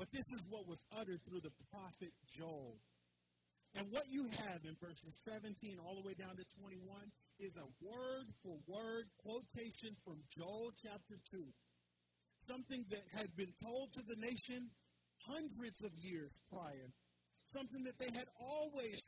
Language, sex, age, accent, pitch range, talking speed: English, male, 40-59, American, 165-220 Hz, 150 wpm